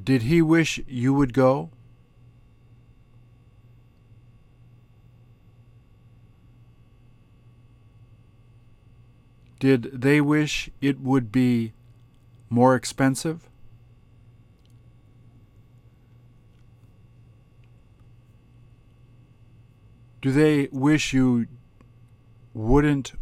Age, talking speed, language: 50-69, 50 wpm, English